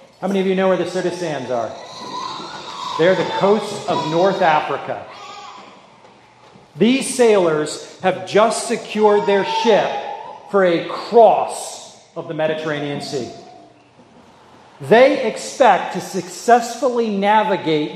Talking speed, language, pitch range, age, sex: 115 wpm, English, 185-240 Hz, 40-59, male